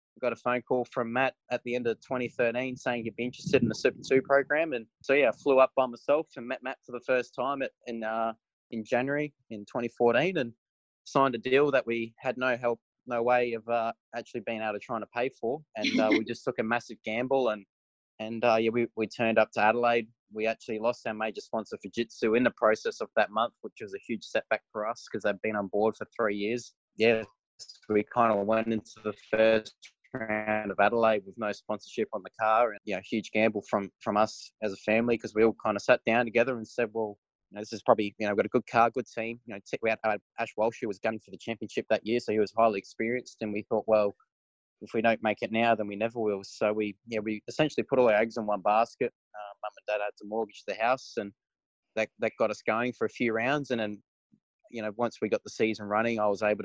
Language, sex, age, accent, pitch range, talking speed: English, male, 20-39, Australian, 105-120 Hz, 255 wpm